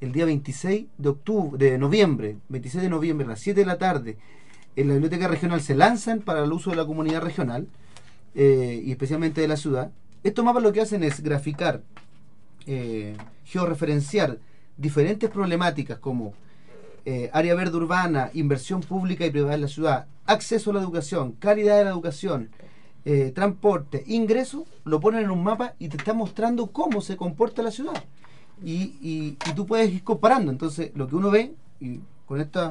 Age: 40-59